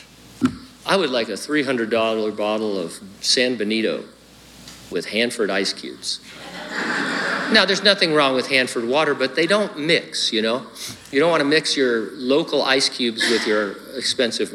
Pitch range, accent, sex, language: 120-160 Hz, American, male, English